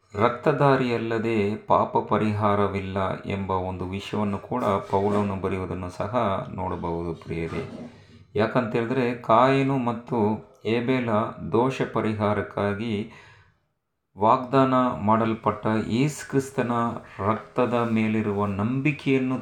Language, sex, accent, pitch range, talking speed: Kannada, male, native, 100-120 Hz, 75 wpm